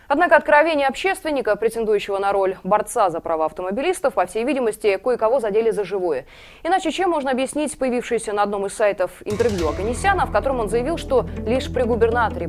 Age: 20-39